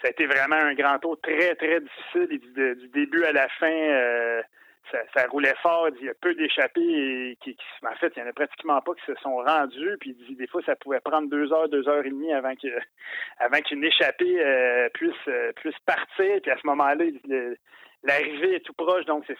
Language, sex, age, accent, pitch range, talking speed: French, male, 30-49, Canadian, 135-175 Hz, 230 wpm